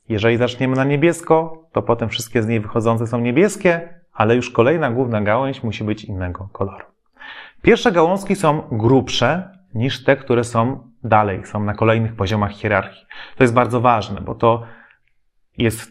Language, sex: Polish, male